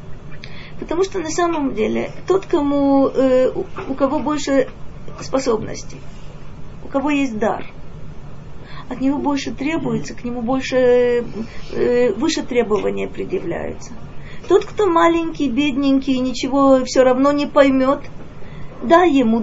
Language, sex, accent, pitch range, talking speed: Russian, female, native, 240-305 Hz, 115 wpm